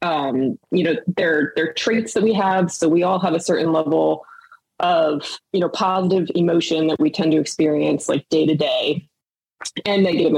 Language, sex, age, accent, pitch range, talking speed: English, female, 20-39, American, 155-195 Hz, 185 wpm